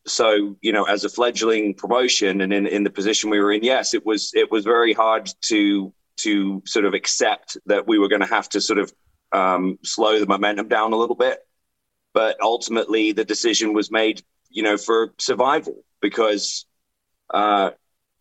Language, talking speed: English, 185 wpm